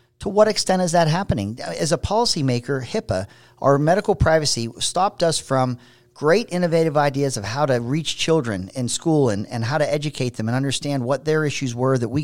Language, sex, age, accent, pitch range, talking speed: English, male, 50-69, American, 125-165 Hz, 195 wpm